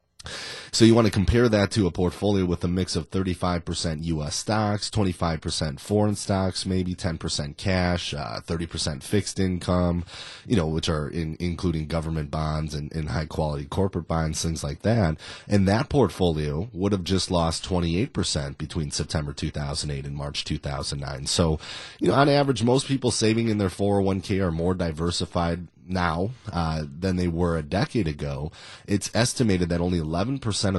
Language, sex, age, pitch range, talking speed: English, male, 30-49, 80-100 Hz, 160 wpm